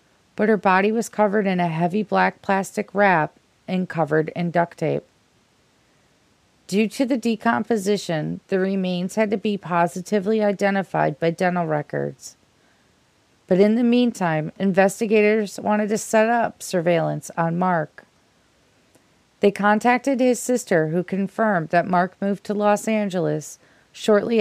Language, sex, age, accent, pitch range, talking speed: English, female, 40-59, American, 170-215 Hz, 135 wpm